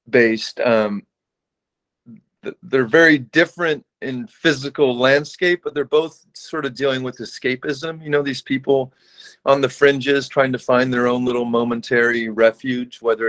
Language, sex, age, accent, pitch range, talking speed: English, male, 40-59, American, 115-140 Hz, 145 wpm